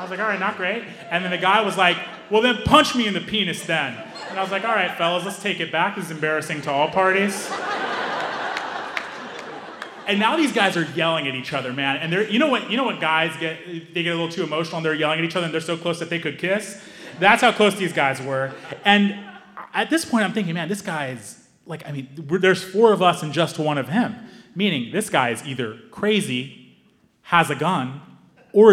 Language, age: English, 30-49